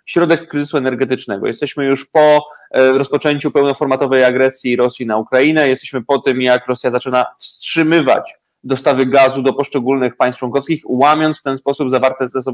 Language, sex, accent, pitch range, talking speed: Polish, male, native, 135-180 Hz, 145 wpm